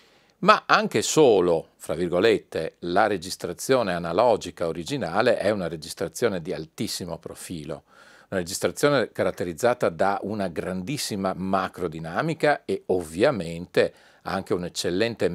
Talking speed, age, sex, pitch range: 100 wpm, 40-59, male, 85-100 Hz